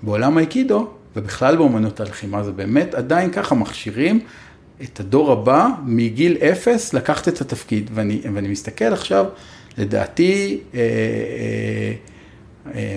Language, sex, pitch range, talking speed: Hebrew, male, 110-155 Hz, 120 wpm